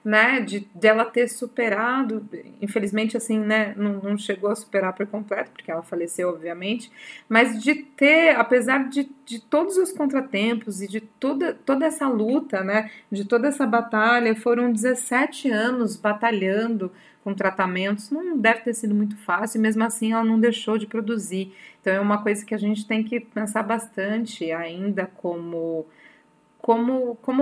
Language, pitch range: Portuguese, 195-245 Hz